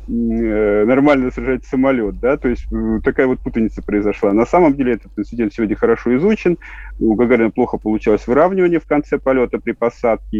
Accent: native